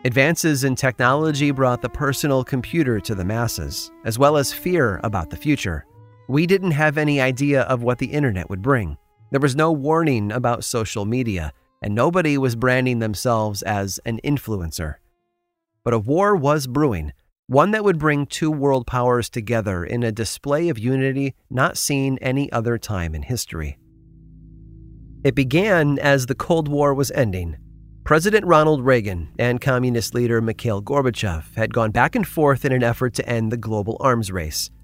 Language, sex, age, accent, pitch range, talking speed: English, male, 30-49, American, 110-140 Hz, 170 wpm